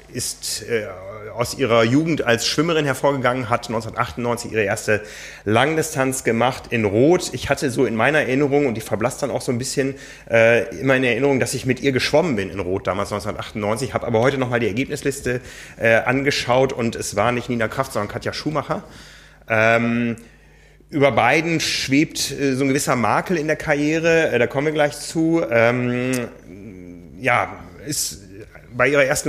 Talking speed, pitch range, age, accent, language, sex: 175 wpm, 110-145 Hz, 30-49, German, German, male